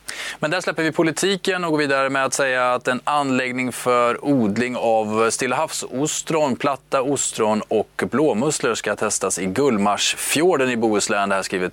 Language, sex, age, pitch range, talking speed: Swedish, male, 20-39, 105-135 Hz, 160 wpm